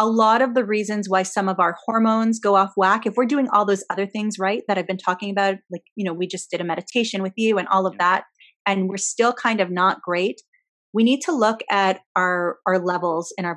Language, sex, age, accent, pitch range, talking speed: English, female, 30-49, American, 175-210 Hz, 250 wpm